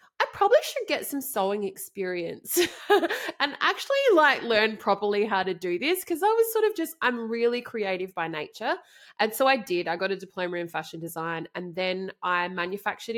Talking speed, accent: 190 wpm, Australian